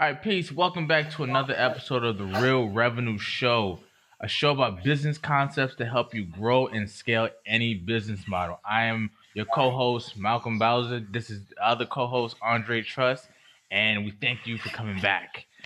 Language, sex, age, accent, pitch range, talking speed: English, male, 20-39, American, 110-130 Hz, 175 wpm